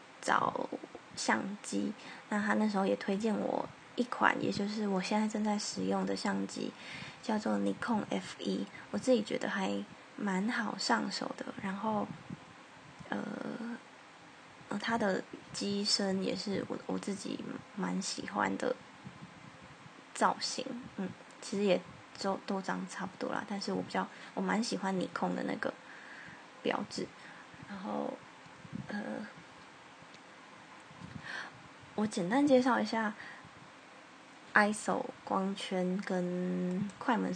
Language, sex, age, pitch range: Chinese, female, 10-29, 180-220 Hz